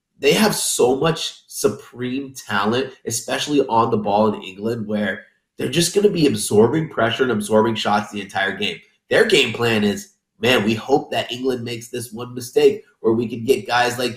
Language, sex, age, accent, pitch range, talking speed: English, male, 30-49, American, 110-180 Hz, 190 wpm